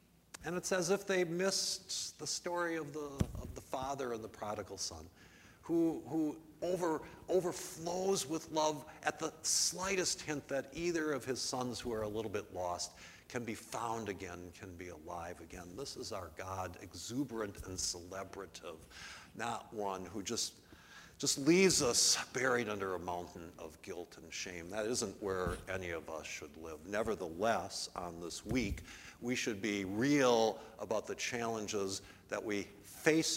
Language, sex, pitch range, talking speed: English, male, 95-160 Hz, 160 wpm